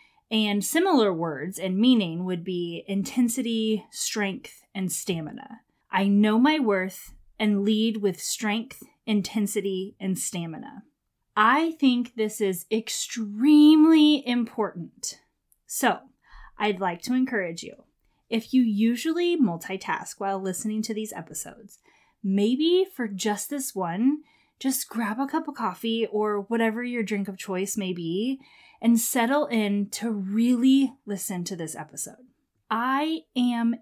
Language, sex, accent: English, female, American